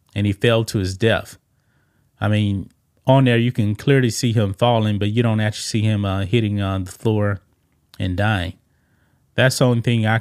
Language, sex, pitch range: English, male, 105-130 Hz